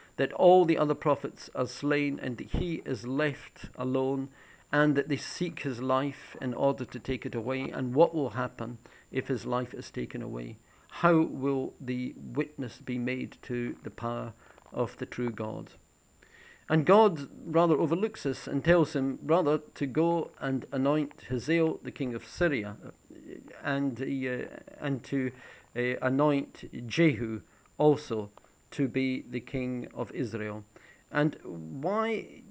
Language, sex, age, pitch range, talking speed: English, male, 50-69, 125-155 Hz, 150 wpm